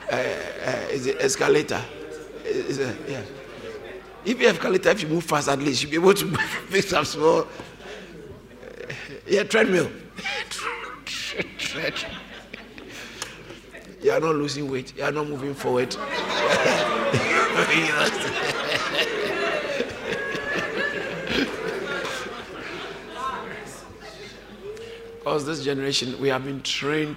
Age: 60-79